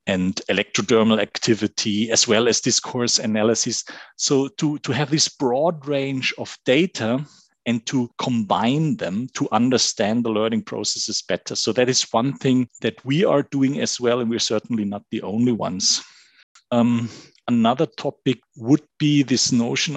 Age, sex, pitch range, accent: 40-59, male, 115-135 Hz, German